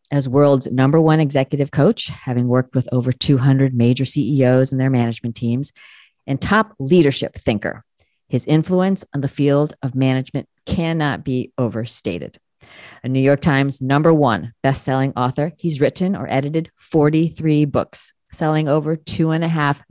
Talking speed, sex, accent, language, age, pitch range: 155 wpm, female, American, English, 40-59, 125-150 Hz